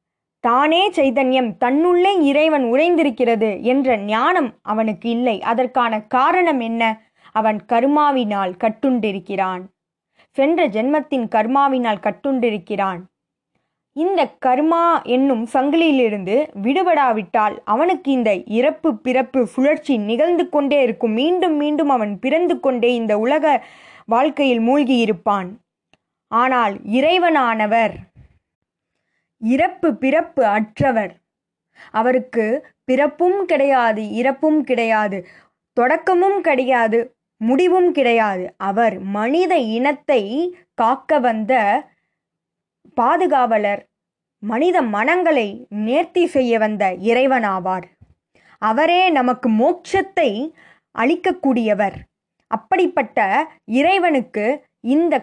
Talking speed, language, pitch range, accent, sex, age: 80 wpm, Tamil, 220-305 Hz, native, female, 20-39